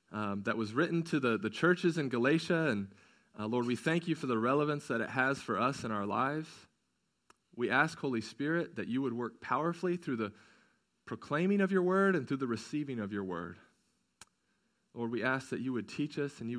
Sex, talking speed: male, 215 wpm